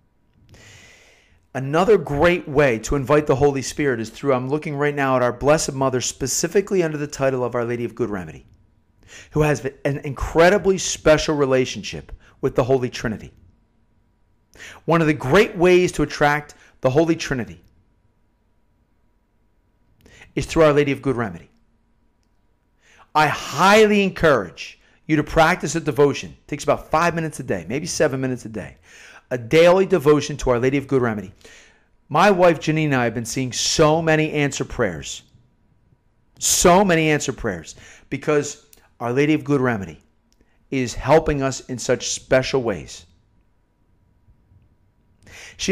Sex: male